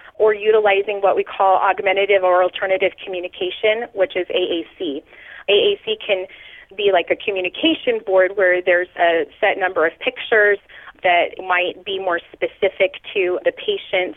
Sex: female